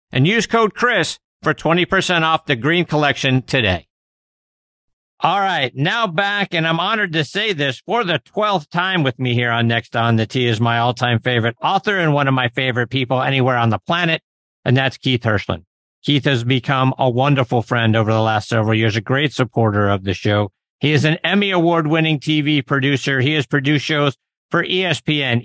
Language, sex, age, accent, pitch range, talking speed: English, male, 50-69, American, 125-165 Hz, 195 wpm